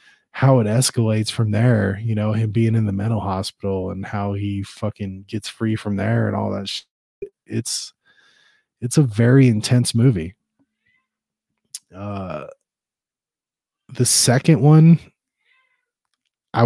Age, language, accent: 20-39, English, American